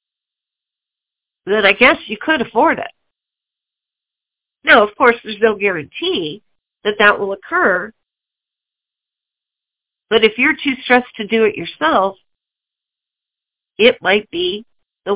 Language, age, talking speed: English, 50-69, 120 wpm